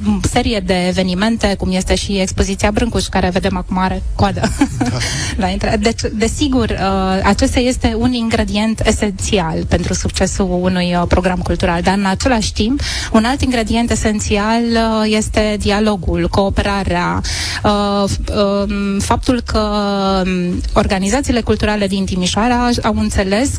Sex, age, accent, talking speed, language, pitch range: female, 20-39, native, 115 wpm, Romanian, 180-220 Hz